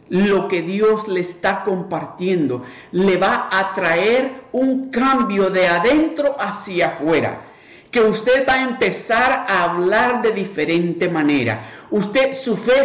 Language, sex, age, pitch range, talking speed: Spanish, male, 50-69, 145-215 Hz, 135 wpm